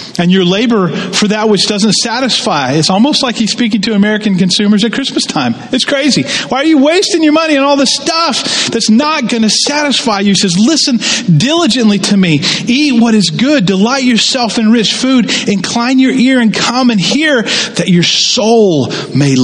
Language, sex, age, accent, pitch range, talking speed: English, male, 40-59, American, 160-235 Hz, 195 wpm